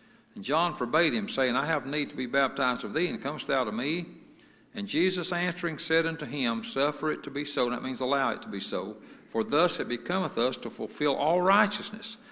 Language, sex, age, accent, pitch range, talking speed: English, male, 60-79, American, 135-210 Hz, 220 wpm